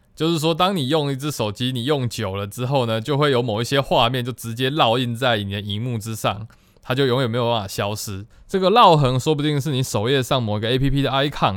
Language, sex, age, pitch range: Chinese, male, 20-39, 115-145 Hz